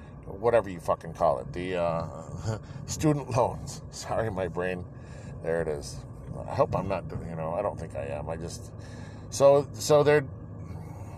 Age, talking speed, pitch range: 40-59, 165 wpm, 95-135 Hz